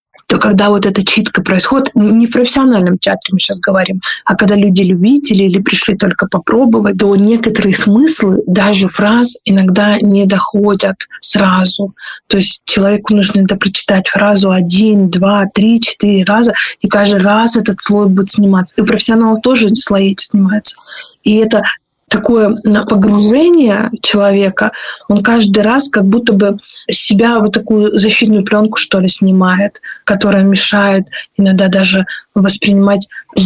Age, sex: 20-39, female